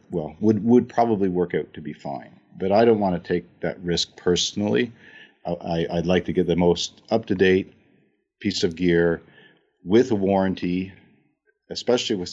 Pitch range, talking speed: 80-95 Hz, 170 wpm